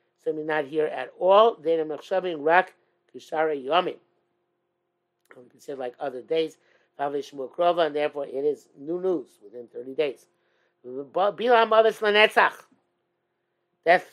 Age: 50-69